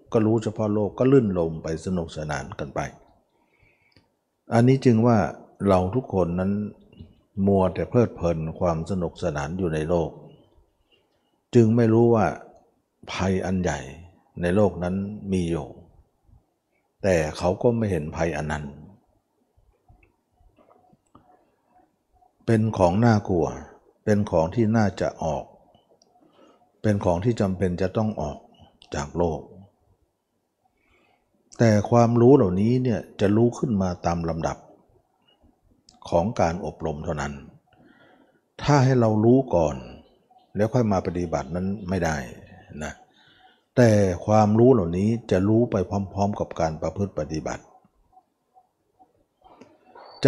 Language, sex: Thai, male